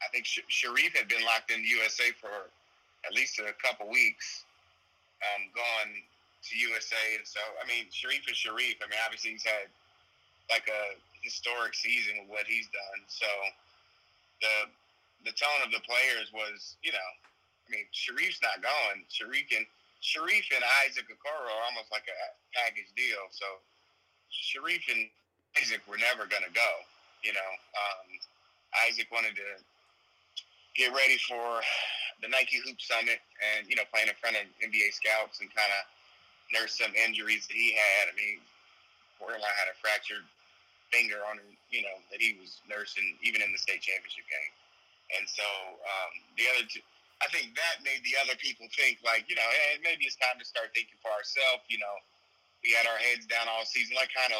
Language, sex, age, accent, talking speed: English, male, 30-49, American, 185 wpm